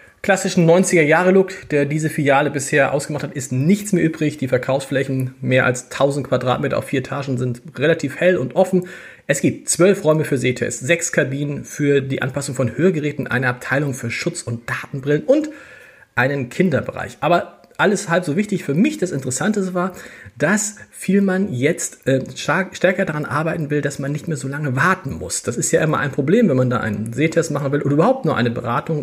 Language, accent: German, German